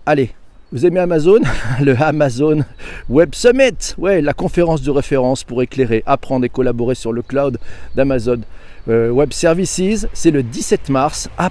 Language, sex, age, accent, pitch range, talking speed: French, male, 40-59, French, 125-165 Hz, 150 wpm